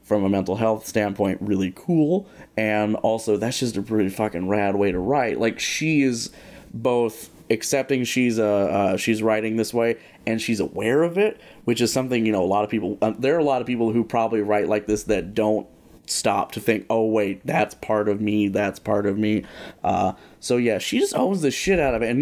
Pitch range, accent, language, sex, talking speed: 105-130 Hz, American, English, male, 225 wpm